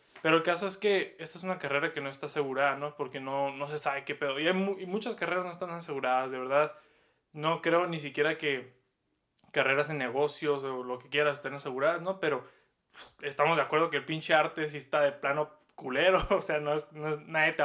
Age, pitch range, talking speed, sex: 20-39, 145-185 Hz, 230 wpm, male